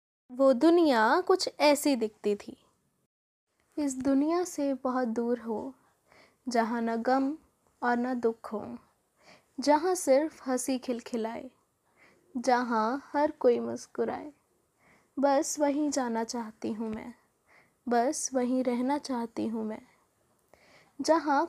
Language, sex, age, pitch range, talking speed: English, female, 20-39, 235-290 Hz, 115 wpm